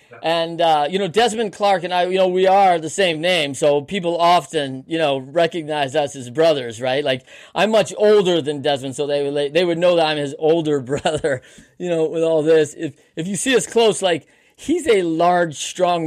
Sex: male